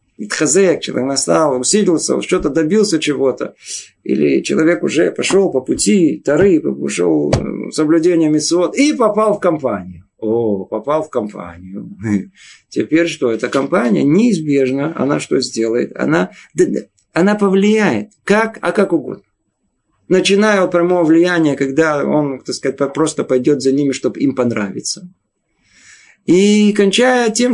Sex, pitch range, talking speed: male, 130-185 Hz, 125 wpm